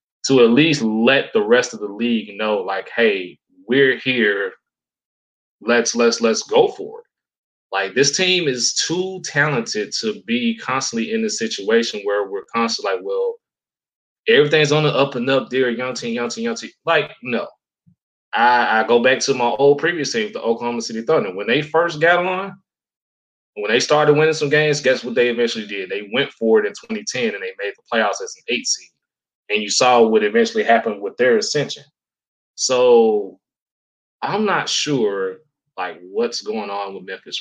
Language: English